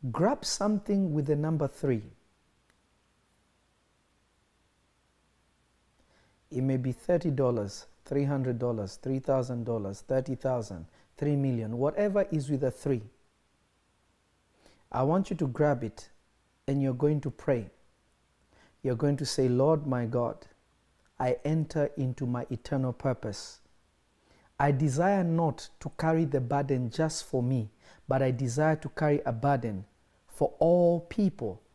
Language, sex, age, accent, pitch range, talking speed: English, male, 50-69, South African, 125-175 Hz, 120 wpm